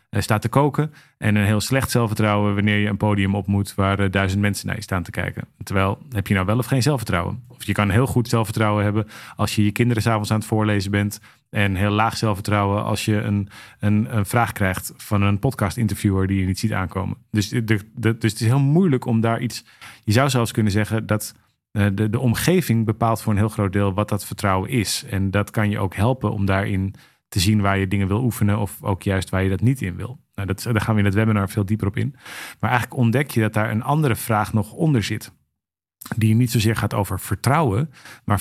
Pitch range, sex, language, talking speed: 100-120 Hz, male, Dutch, 235 wpm